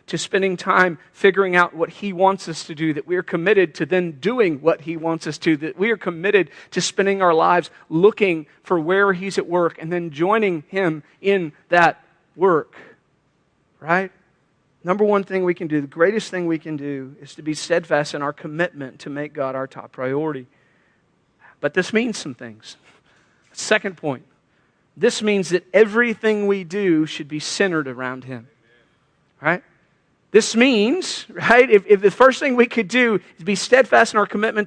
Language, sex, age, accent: English, male, 40-59, American